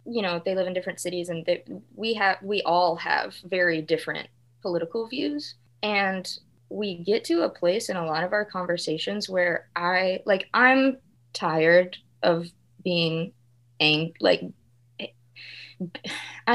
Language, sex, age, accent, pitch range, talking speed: English, female, 20-39, American, 165-210 Hz, 135 wpm